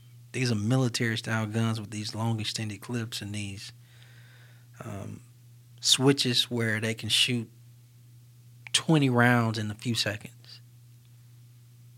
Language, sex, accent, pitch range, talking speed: English, male, American, 110-120 Hz, 110 wpm